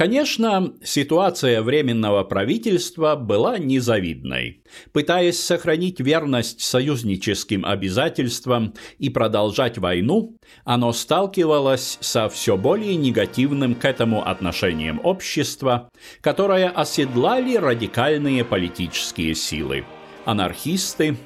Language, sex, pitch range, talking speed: Russian, male, 100-155 Hz, 85 wpm